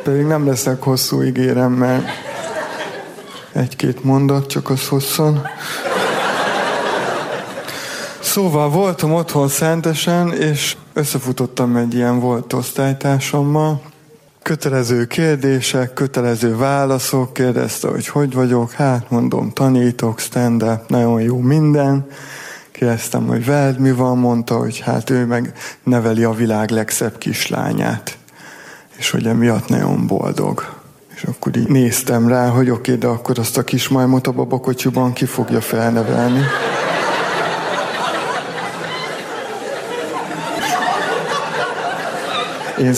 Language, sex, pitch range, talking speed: Hungarian, male, 125-145 Hz, 105 wpm